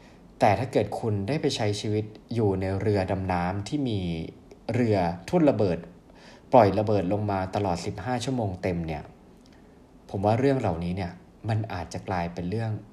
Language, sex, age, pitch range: Thai, male, 20-39, 95-125 Hz